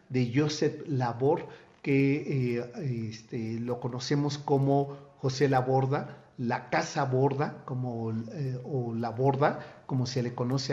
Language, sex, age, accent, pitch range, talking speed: Spanish, male, 50-69, Mexican, 130-160 Hz, 135 wpm